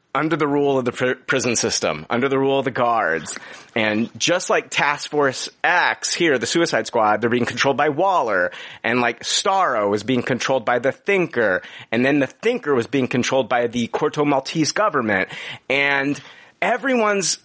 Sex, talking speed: male, 180 wpm